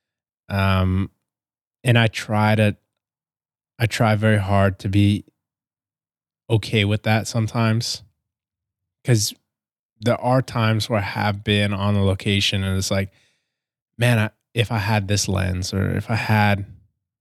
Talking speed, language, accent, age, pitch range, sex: 135 wpm, English, American, 20-39, 100-110 Hz, male